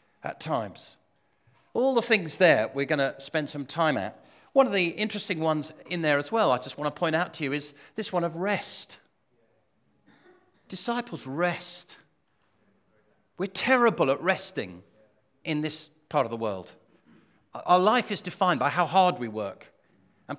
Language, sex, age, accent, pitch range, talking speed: English, male, 40-59, British, 125-185 Hz, 170 wpm